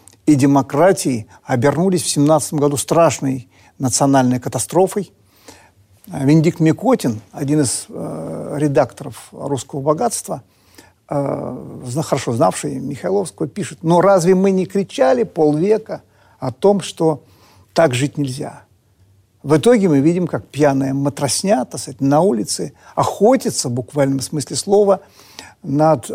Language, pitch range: Russian, 125-185 Hz